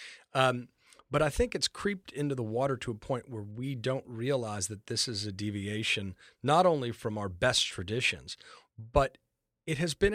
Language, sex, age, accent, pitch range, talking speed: English, male, 40-59, American, 105-140 Hz, 185 wpm